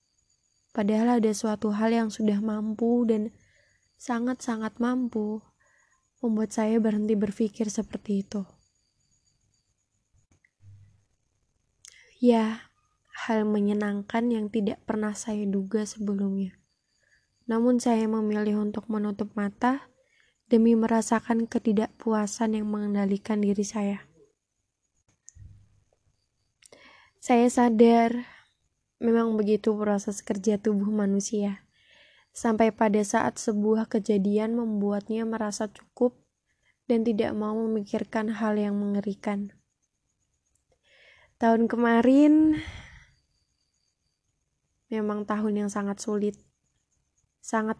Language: Indonesian